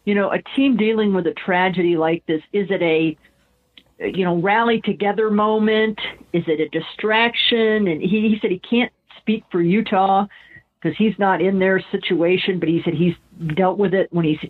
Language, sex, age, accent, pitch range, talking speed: English, female, 50-69, American, 170-215 Hz, 190 wpm